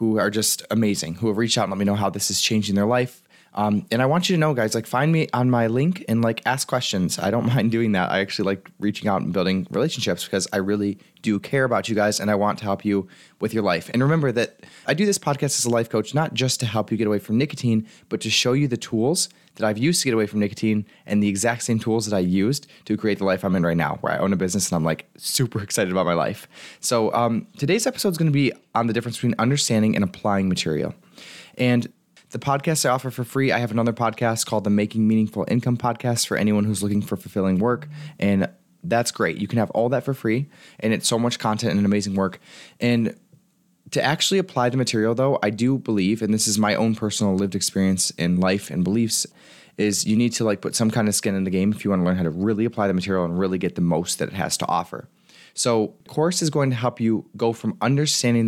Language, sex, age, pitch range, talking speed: English, male, 20-39, 100-125 Hz, 260 wpm